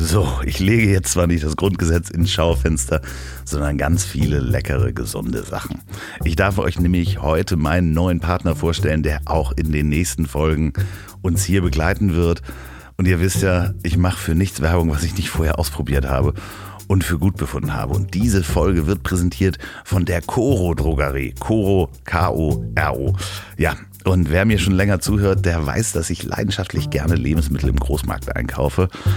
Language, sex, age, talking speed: German, male, 50-69, 170 wpm